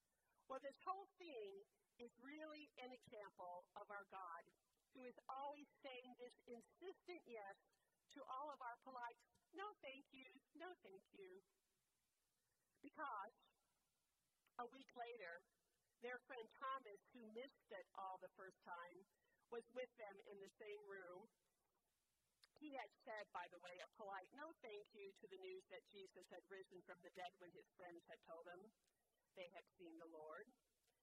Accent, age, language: American, 50-69, English